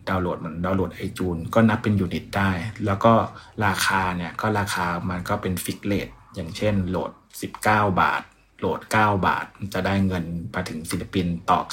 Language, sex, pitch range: Thai, male, 95-110 Hz